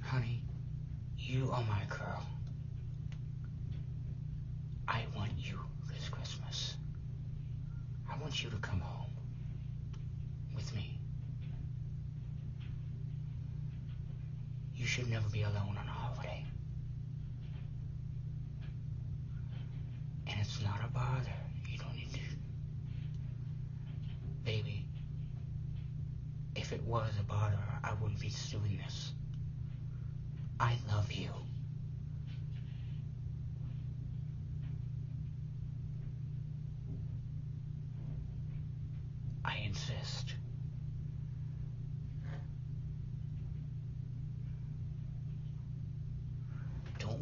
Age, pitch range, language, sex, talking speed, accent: 60-79, 130-135 Hz, English, male, 65 wpm, American